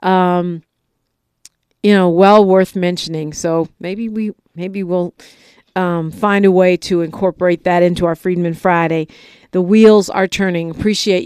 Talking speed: 155 wpm